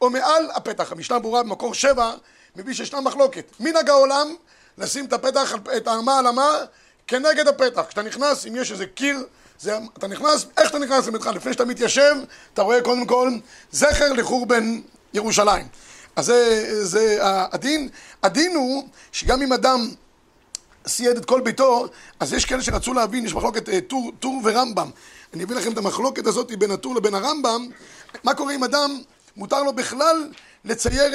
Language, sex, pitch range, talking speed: Hebrew, male, 230-280 Hz, 165 wpm